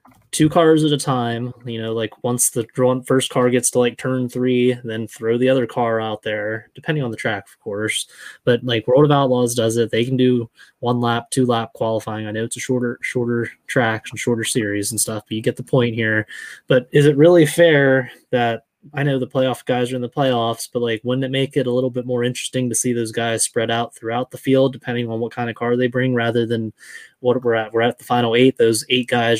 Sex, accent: male, American